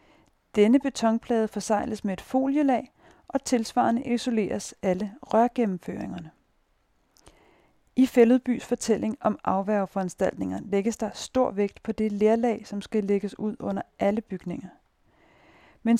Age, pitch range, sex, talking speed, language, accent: 40-59, 205-245 Hz, female, 115 wpm, Danish, native